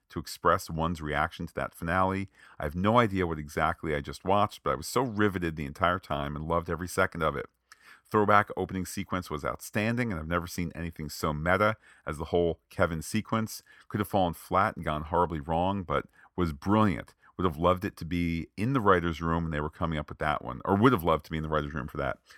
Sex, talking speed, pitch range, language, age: male, 235 wpm, 80-105 Hz, English, 40-59